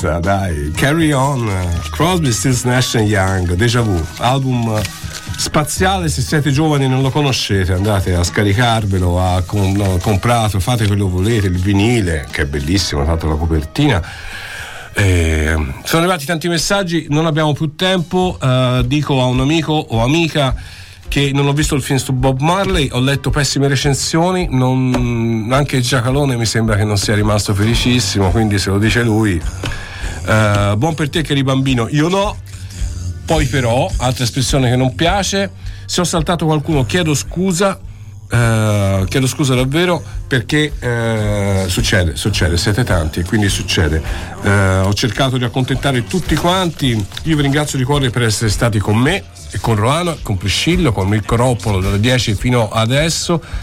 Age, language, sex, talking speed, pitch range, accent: 50-69, Italian, male, 160 wpm, 100-140 Hz, native